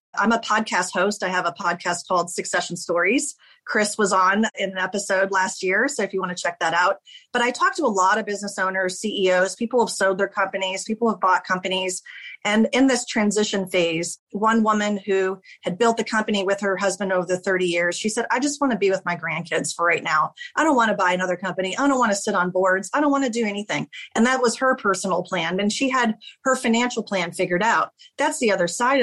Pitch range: 180-235 Hz